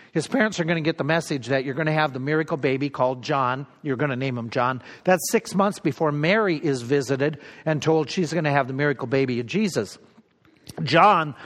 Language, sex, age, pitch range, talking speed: English, male, 50-69, 140-175 Hz, 225 wpm